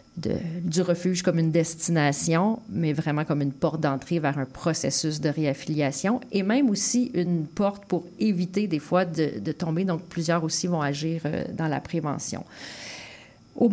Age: 40-59